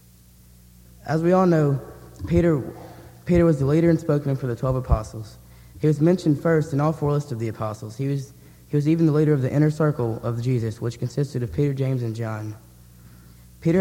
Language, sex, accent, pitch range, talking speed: English, male, American, 105-150 Hz, 205 wpm